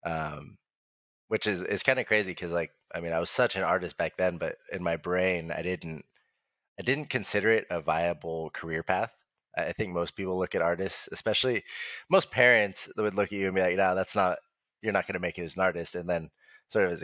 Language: English